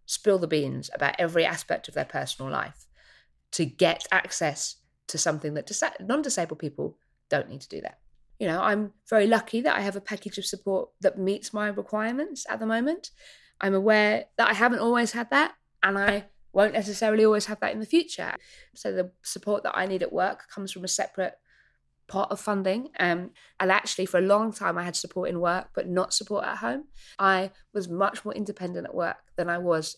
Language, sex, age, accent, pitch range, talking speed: English, female, 20-39, British, 185-230 Hz, 205 wpm